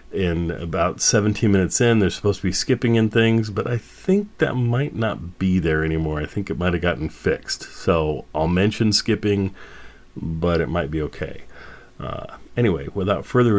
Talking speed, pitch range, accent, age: 180 wpm, 80-95 Hz, American, 40-59